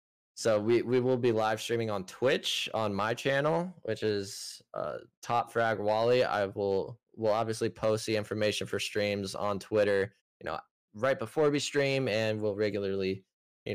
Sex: male